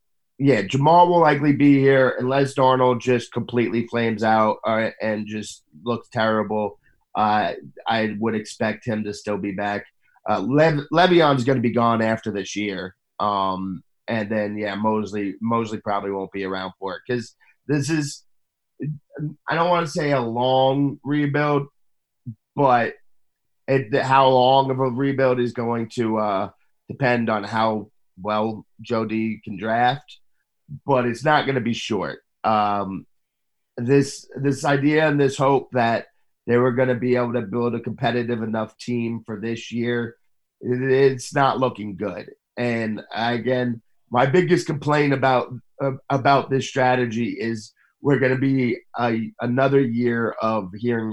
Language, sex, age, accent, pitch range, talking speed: English, male, 30-49, American, 110-135 Hz, 155 wpm